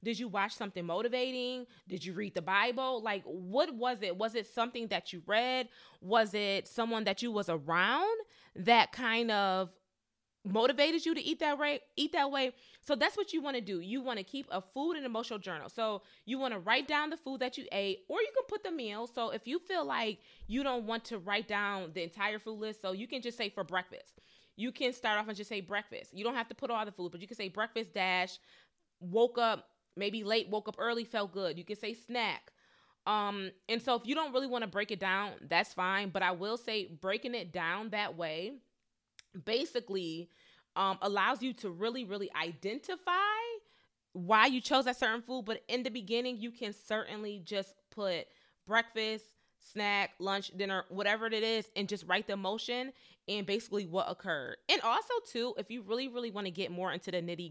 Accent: American